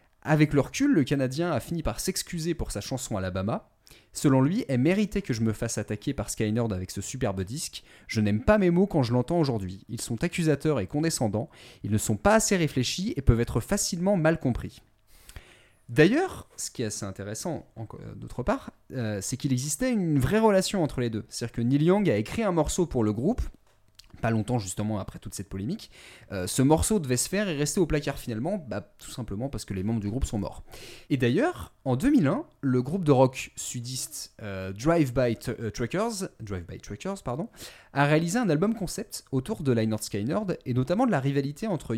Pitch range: 110-160 Hz